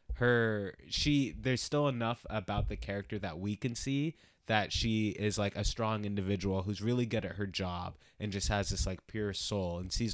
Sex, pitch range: male, 95-115 Hz